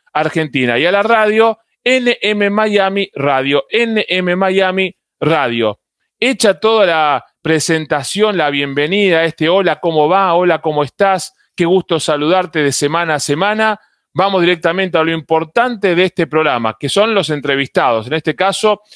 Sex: male